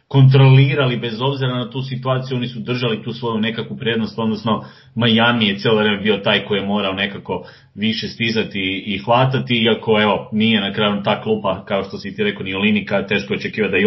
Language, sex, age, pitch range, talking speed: English, male, 30-49, 105-130 Hz, 190 wpm